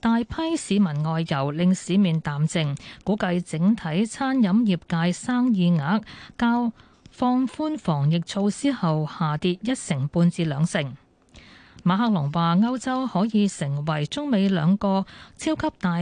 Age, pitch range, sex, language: 20-39, 165-220 Hz, female, Chinese